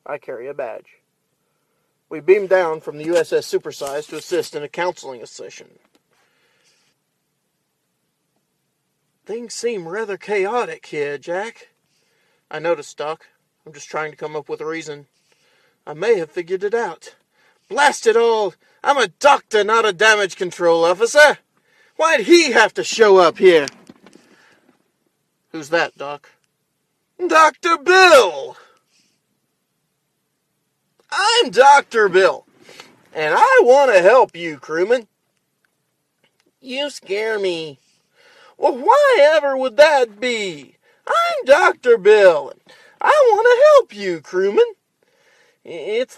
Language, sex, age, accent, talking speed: English, male, 40-59, American, 120 wpm